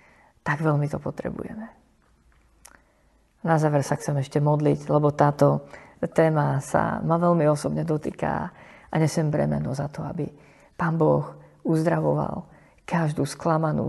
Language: Slovak